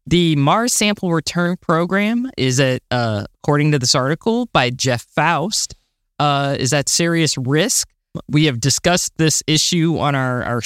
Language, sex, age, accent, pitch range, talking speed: English, male, 20-39, American, 125-165 Hz, 160 wpm